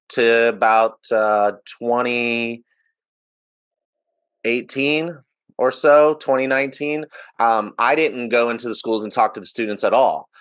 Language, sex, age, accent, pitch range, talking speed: English, male, 30-49, American, 125-190 Hz, 120 wpm